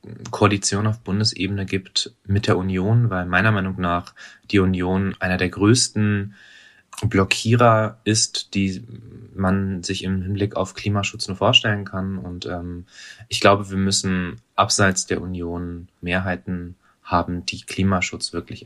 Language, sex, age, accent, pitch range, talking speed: German, male, 20-39, German, 95-110 Hz, 135 wpm